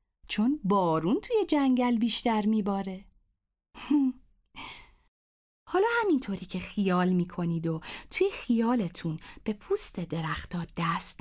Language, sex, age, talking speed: Persian, female, 30-49, 95 wpm